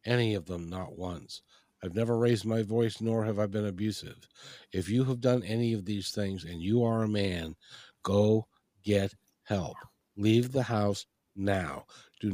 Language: English